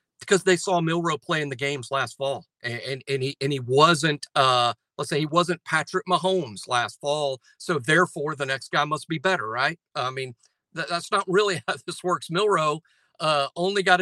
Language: English